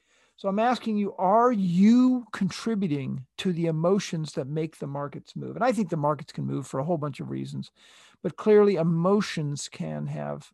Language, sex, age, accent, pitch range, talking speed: English, male, 50-69, American, 150-210 Hz, 190 wpm